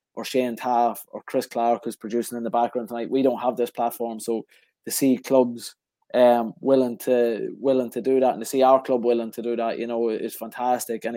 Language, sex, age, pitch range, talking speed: English, male, 20-39, 120-135 Hz, 225 wpm